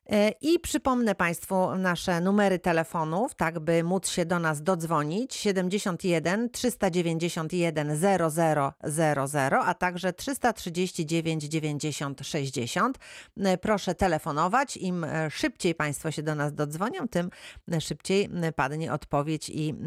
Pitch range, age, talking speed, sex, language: 160-205 Hz, 40-59, 105 wpm, female, Polish